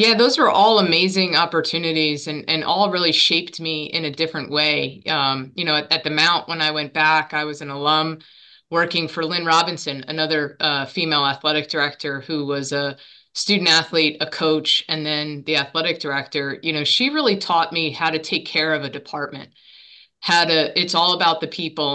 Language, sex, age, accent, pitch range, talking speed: English, female, 20-39, American, 150-165 Hz, 195 wpm